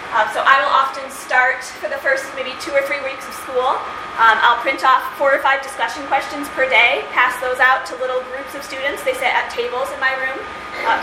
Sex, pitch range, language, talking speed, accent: female, 245-300 Hz, English, 235 wpm, American